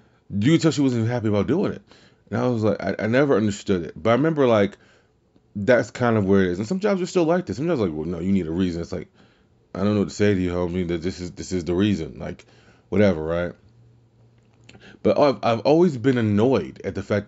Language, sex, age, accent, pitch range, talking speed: English, male, 30-49, American, 100-130 Hz, 255 wpm